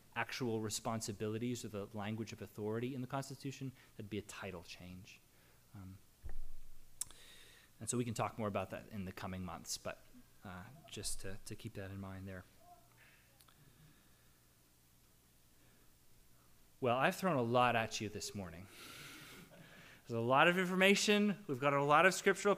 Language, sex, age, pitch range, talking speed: English, male, 20-39, 105-150 Hz, 155 wpm